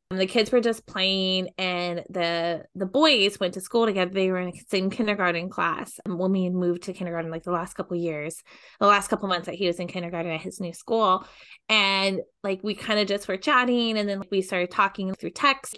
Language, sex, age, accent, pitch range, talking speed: English, female, 20-39, American, 185-220 Hz, 230 wpm